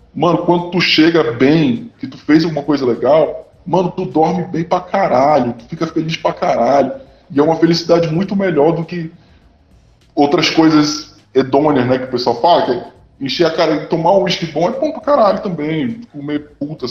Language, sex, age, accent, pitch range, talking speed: Portuguese, female, 20-39, Brazilian, 125-170 Hz, 195 wpm